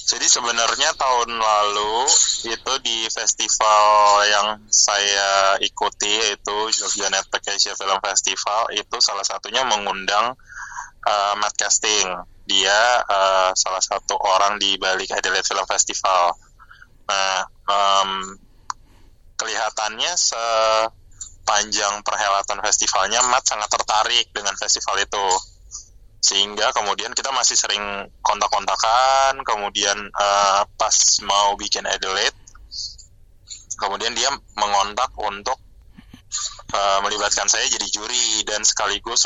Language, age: Indonesian, 20-39